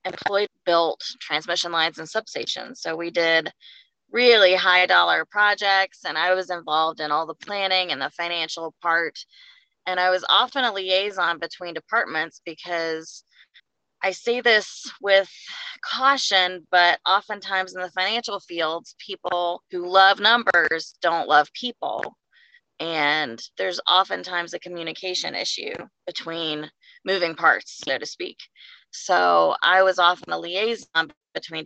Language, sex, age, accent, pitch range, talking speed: English, female, 20-39, American, 165-210 Hz, 135 wpm